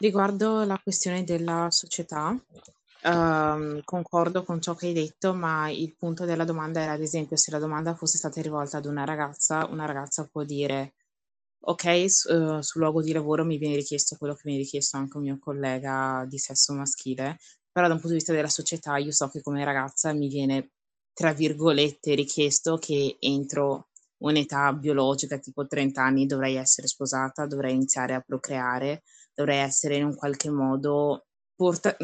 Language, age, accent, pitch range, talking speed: Italian, 20-39, native, 140-160 Hz, 170 wpm